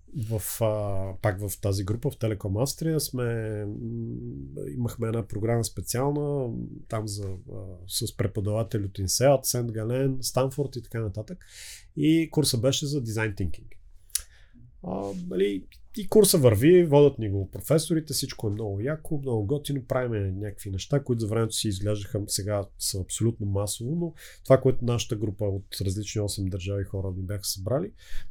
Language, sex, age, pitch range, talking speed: Bulgarian, male, 30-49, 100-140 Hz, 140 wpm